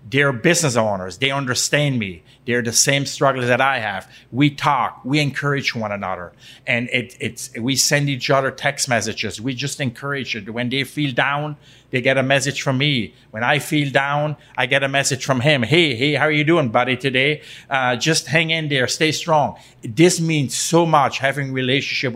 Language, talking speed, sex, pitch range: English, 200 wpm, male, 120-140 Hz